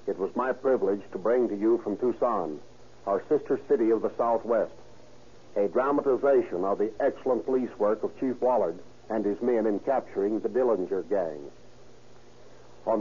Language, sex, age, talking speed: English, male, 60-79, 160 wpm